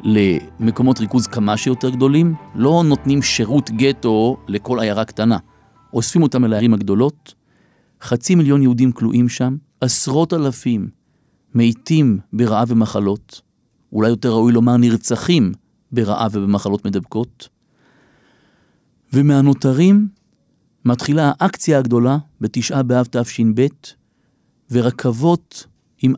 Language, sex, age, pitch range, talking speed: Hebrew, male, 50-69, 115-140 Hz, 100 wpm